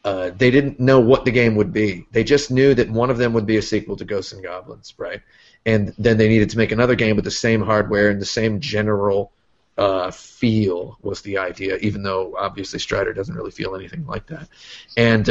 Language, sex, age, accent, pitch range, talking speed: English, male, 30-49, American, 105-130 Hz, 225 wpm